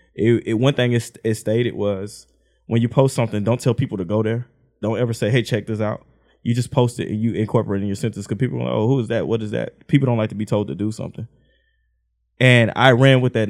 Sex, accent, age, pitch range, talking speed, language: male, American, 20-39, 105-125 Hz, 270 wpm, English